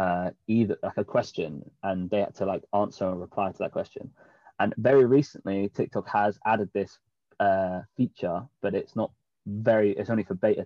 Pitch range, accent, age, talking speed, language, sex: 100-115 Hz, British, 20-39, 185 wpm, English, male